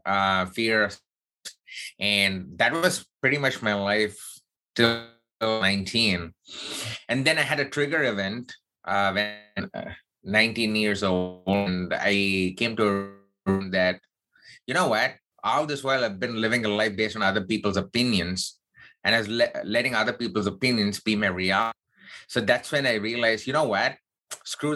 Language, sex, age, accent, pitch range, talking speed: English, male, 20-39, Indian, 100-120 Hz, 160 wpm